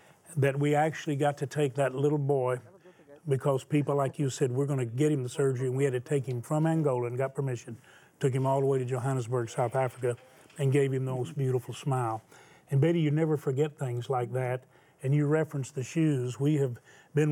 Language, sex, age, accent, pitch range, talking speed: English, male, 40-59, American, 130-150 Hz, 220 wpm